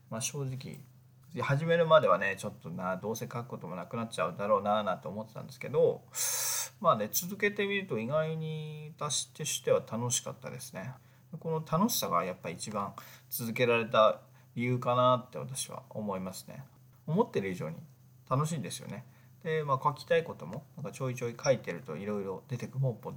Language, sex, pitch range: Japanese, male, 120-155 Hz